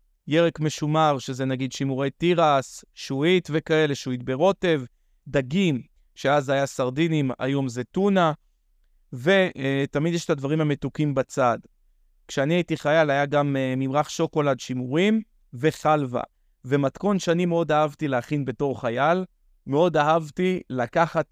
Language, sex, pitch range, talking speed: Hebrew, male, 125-160 Hz, 125 wpm